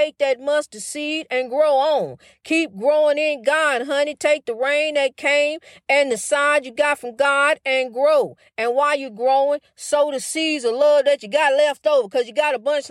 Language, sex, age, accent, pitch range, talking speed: English, female, 40-59, American, 280-330 Hz, 210 wpm